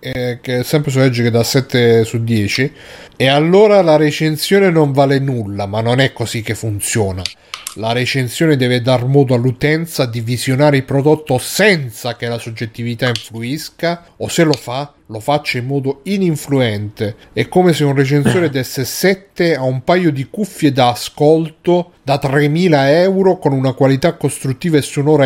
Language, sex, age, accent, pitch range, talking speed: Italian, male, 40-59, native, 120-155 Hz, 165 wpm